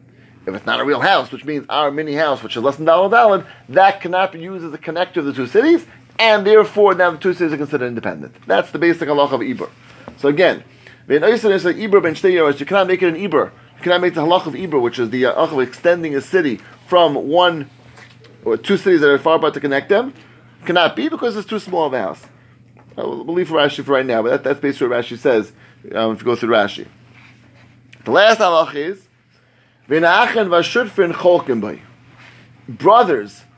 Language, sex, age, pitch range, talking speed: English, male, 30-49, 130-185 Hz, 210 wpm